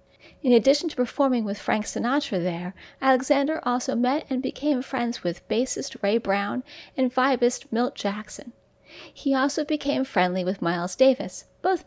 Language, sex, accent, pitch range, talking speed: English, female, American, 205-290 Hz, 150 wpm